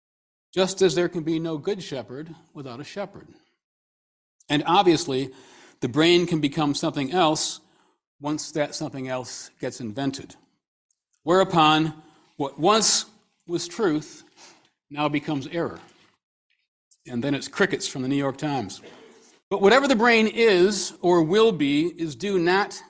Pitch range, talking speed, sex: 135-180 Hz, 140 wpm, male